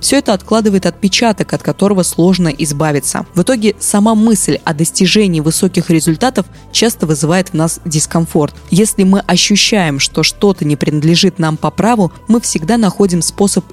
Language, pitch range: Russian, 165-205 Hz